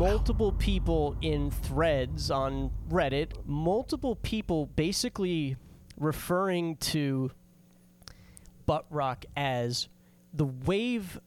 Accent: American